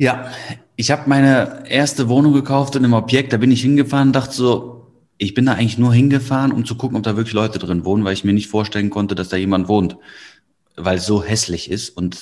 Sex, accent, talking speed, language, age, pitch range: male, German, 235 wpm, German, 30-49, 95-120 Hz